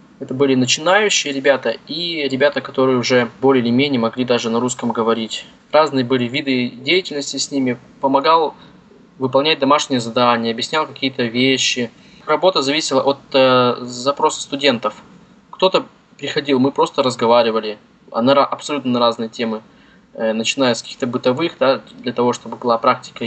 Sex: male